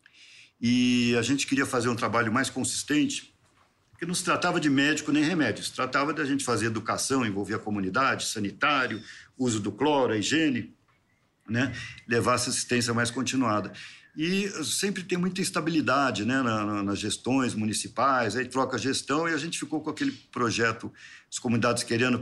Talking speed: 160 wpm